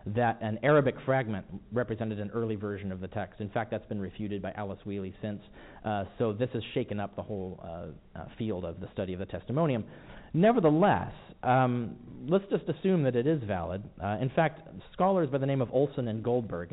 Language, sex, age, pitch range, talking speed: English, male, 40-59, 100-140 Hz, 205 wpm